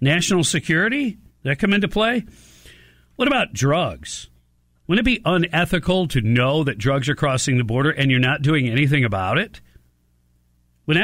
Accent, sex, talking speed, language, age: American, male, 160 wpm, English, 50-69